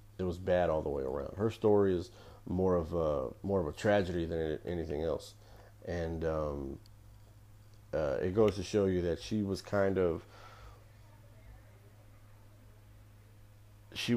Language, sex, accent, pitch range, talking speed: English, male, American, 90-105 Hz, 145 wpm